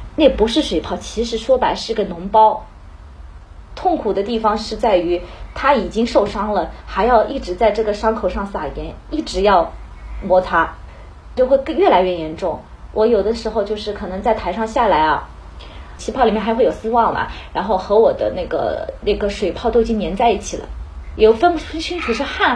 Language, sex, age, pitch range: Chinese, female, 20-39, 190-260 Hz